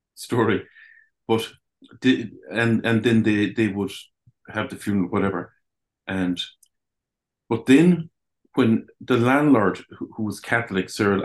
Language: English